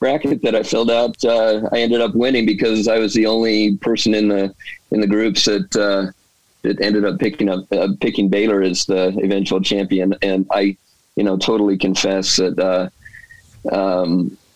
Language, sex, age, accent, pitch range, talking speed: English, male, 30-49, American, 95-110 Hz, 180 wpm